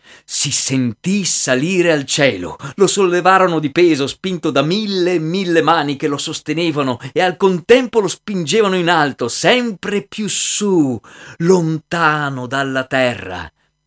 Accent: native